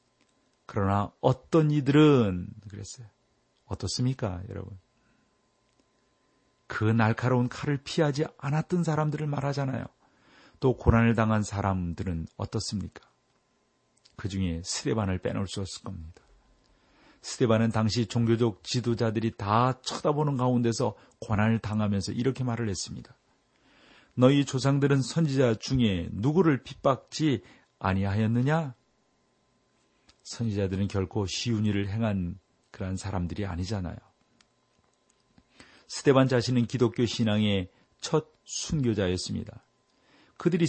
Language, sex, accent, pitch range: Korean, male, native, 100-130 Hz